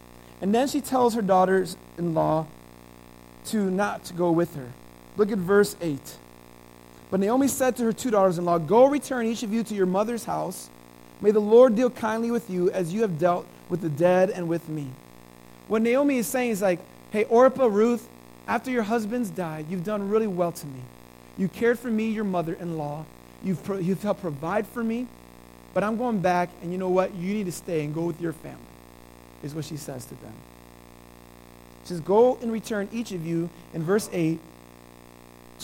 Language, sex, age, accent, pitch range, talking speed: English, male, 40-59, American, 140-225 Hz, 190 wpm